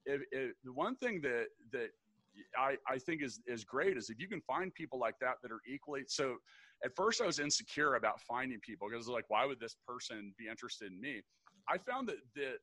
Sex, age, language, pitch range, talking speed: male, 40-59, English, 125-165 Hz, 240 wpm